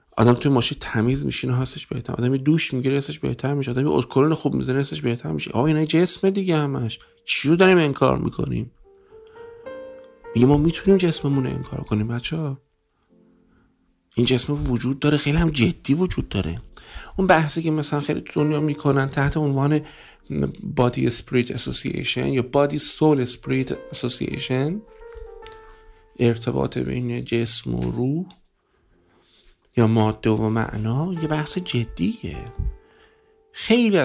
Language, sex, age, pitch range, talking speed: Persian, male, 50-69, 115-160 Hz, 135 wpm